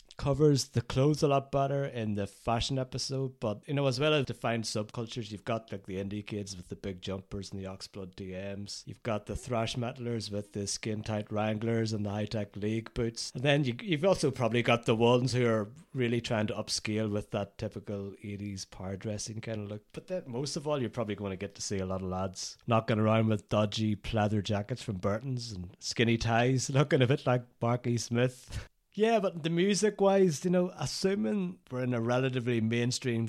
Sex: male